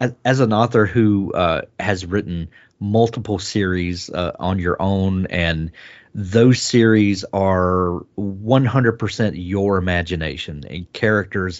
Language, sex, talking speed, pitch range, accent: English, male, 115 wpm, 90-110 Hz, American